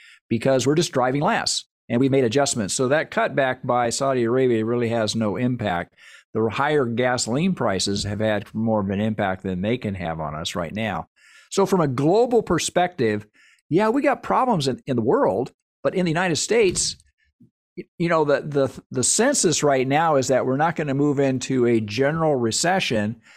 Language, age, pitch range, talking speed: English, 50-69, 115-140 Hz, 190 wpm